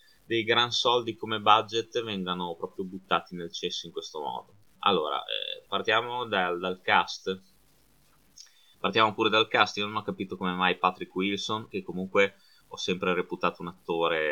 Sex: male